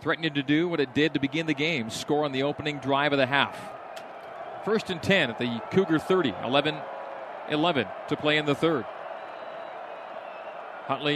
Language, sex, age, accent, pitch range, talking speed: English, male, 40-59, American, 130-155 Hz, 170 wpm